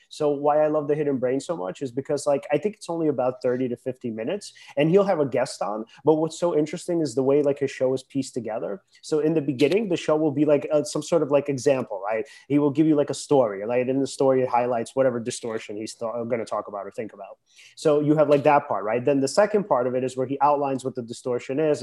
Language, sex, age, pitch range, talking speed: English, male, 30-49, 125-150 Hz, 280 wpm